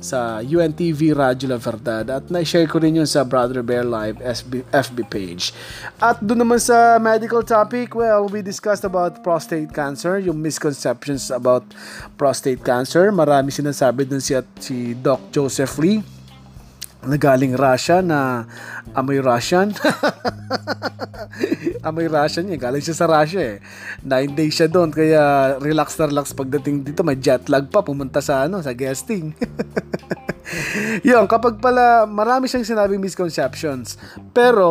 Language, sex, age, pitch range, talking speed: Filipino, male, 20-39, 130-180 Hz, 140 wpm